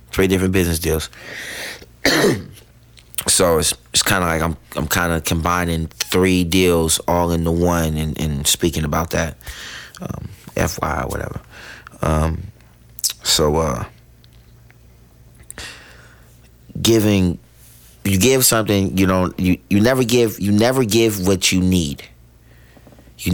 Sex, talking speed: male, 120 wpm